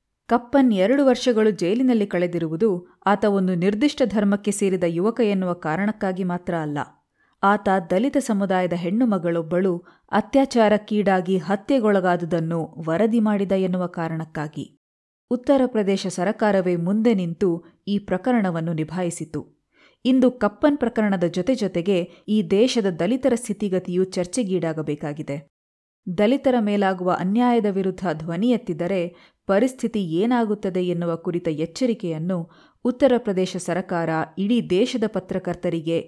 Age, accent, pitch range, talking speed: 30-49, native, 175-225 Hz, 100 wpm